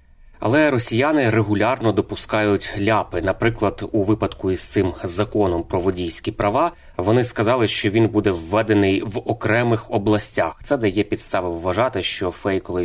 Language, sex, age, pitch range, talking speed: Ukrainian, male, 20-39, 90-110 Hz, 135 wpm